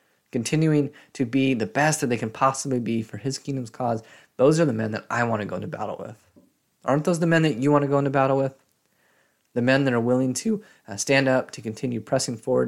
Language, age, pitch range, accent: English, 20-39, 115-140 Hz, American